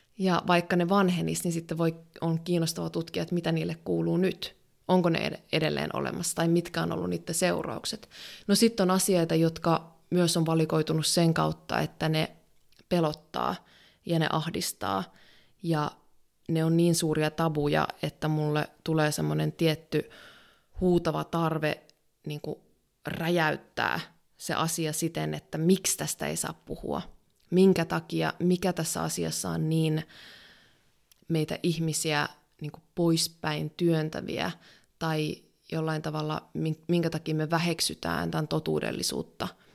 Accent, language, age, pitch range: native, Finnish, 20-39, 150-170 Hz